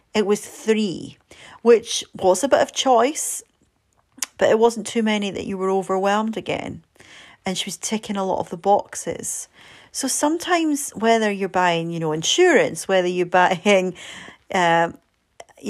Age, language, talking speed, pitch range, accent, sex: 40-59, English, 155 wpm, 165-210 Hz, British, female